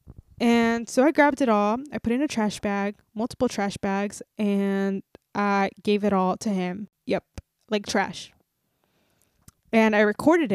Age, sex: 20-39, female